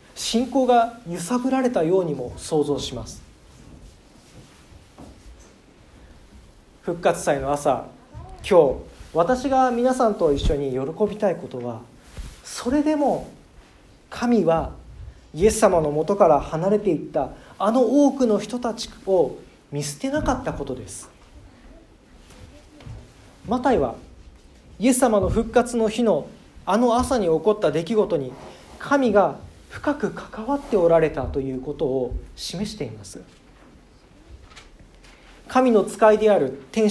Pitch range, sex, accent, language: 145-240 Hz, male, native, Japanese